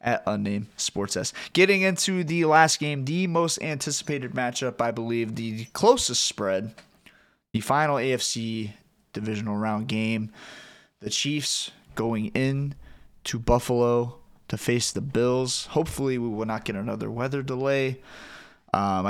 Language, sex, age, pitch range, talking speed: English, male, 20-39, 110-140 Hz, 135 wpm